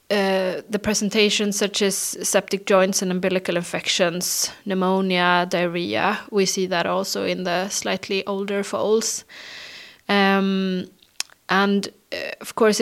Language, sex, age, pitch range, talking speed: Danish, female, 20-39, 185-200 Hz, 120 wpm